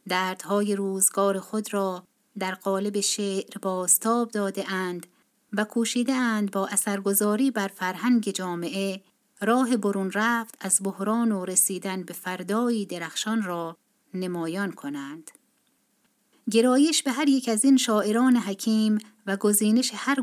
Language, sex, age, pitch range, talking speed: Persian, female, 30-49, 190-230 Hz, 125 wpm